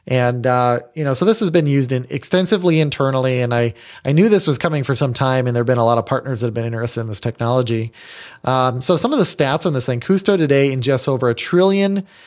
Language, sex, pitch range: English, male, 125-150 Hz